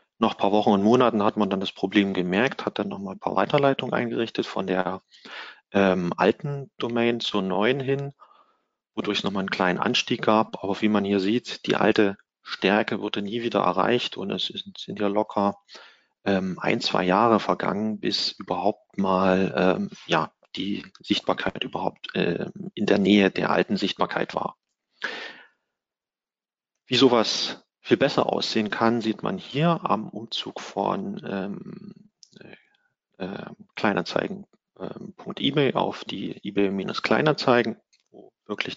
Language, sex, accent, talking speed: German, male, German, 145 wpm